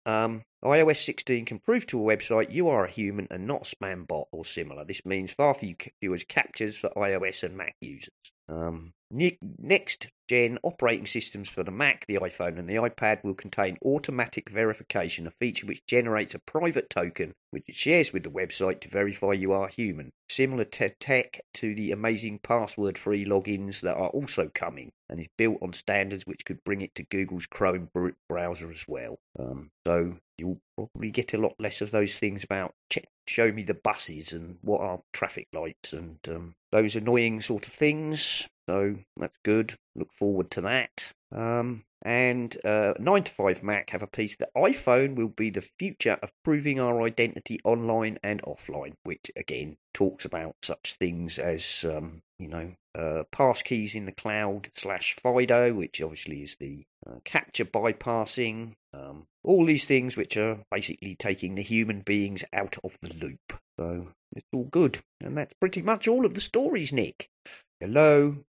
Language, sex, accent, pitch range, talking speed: English, male, British, 90-120 Hz, 175 wpm